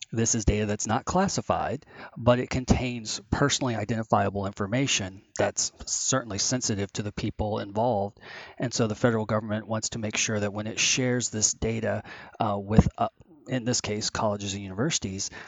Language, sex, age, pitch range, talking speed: English, male, 30-49, 100-120 Hz, 165 wpm